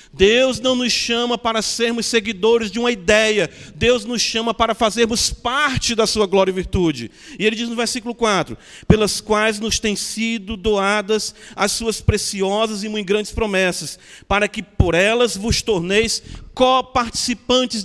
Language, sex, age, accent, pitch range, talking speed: Portuguese, male, 40-59, Brazilian, 195-245 Hz, 160 wpm